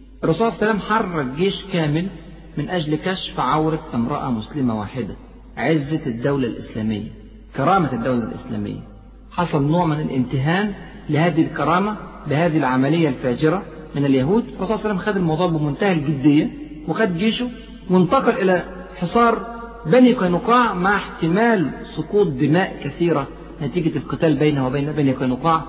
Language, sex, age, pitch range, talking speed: Arabic, male, 50-69, 140-185 Hz, 120 wpm